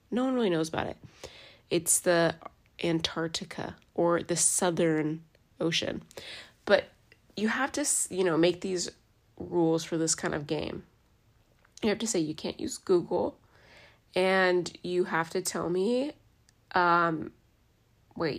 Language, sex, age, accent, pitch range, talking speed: English, female, 20-39, American, 165-240 Hz, 140 wpm